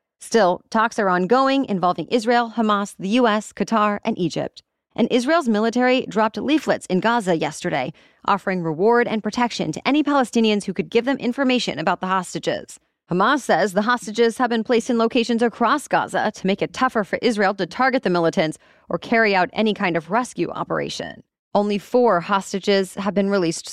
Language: English